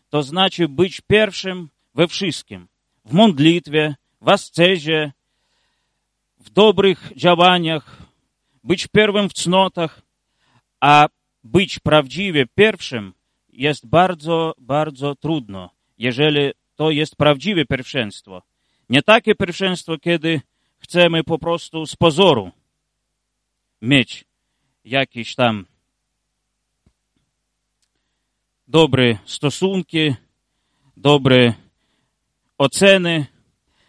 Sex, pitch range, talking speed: male, 130-170 Hz, 80 wpm